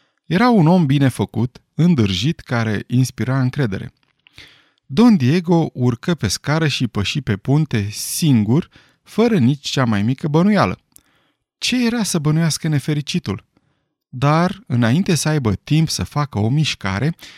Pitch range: 115-165 Hz